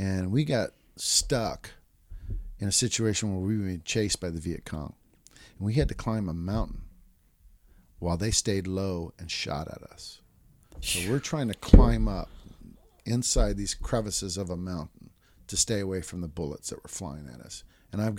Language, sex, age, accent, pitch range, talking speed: English, male, 50-69, American, 90-110 Hz, 180 wpm